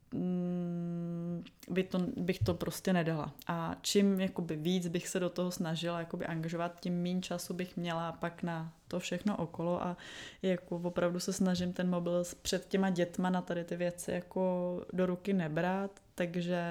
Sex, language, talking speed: female, Czech, 170 wpm